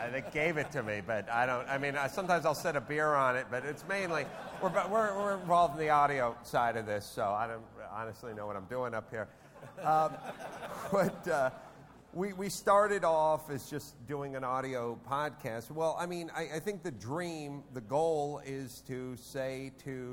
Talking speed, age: 205 wpm, 50-69